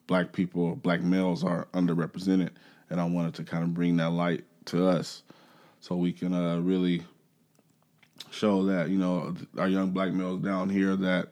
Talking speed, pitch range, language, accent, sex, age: 175 wpm, 85-95 Hz, English, American, male, 20-39